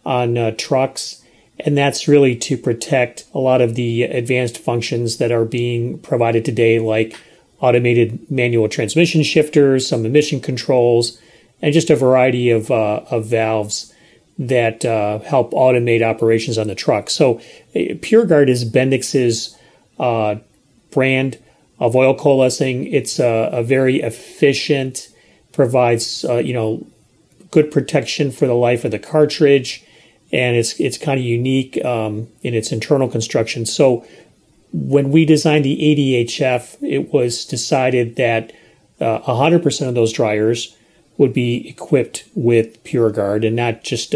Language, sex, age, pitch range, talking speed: English, male, 30-49, 115-140 Hz, 140 wpm